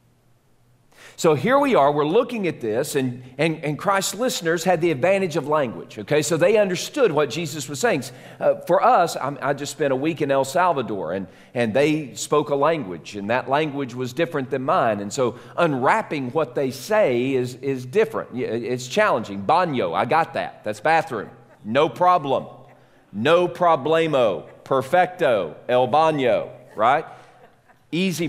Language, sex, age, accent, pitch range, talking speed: English, male, 40-59, American, 130-180 Hz, 165 wpm